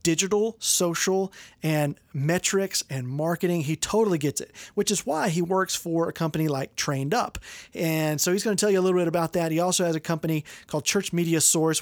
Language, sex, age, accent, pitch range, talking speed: English, male, 30-49, American, 155-190 Hz, 215 wpm